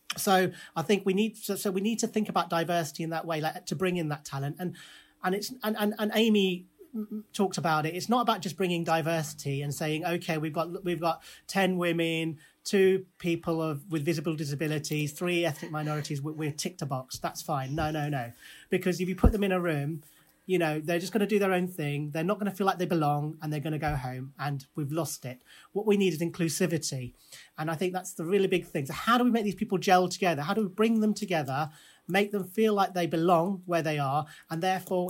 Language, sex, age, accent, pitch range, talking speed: English, male, 30-49, British, 155-190 Hz, 240 wpm